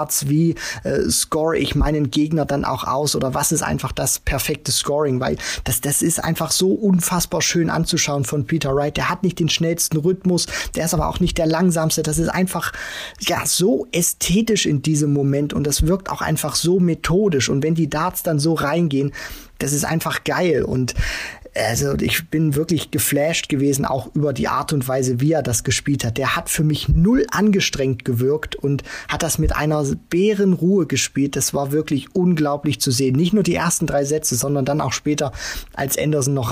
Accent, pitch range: German, 135-165 Hz